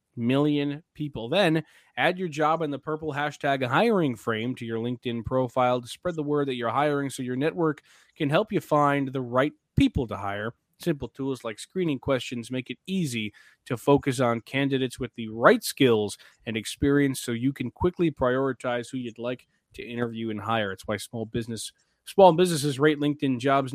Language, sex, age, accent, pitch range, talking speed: English, male, 20-39, American, 120-145 Hz, 185 wpm